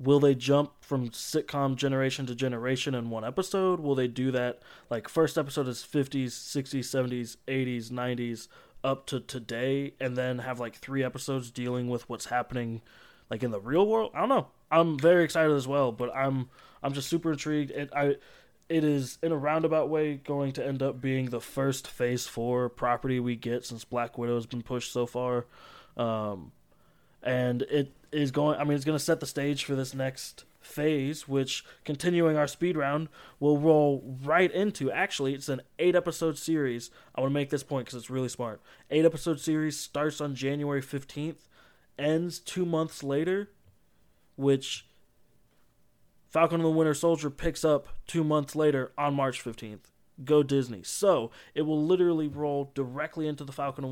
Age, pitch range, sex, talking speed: 20-39, 125-150 Hz, male, 180 wpm